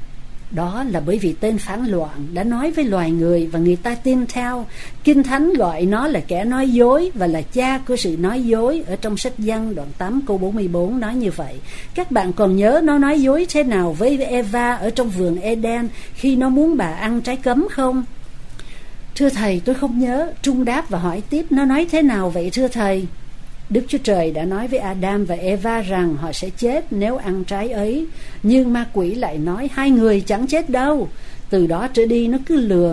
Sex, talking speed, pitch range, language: female, 215 wpm, 185-260 Hz, Vietnamese